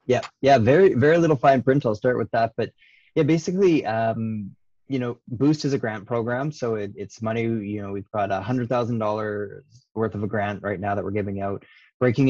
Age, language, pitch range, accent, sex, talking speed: 20-39, English, 100-120 Hz, American, male, 220 wpm